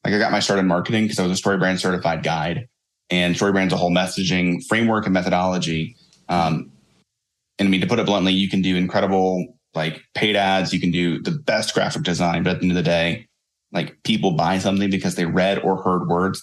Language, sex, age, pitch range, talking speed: English, male, 30-49, 90-100 Hz, 230 wpm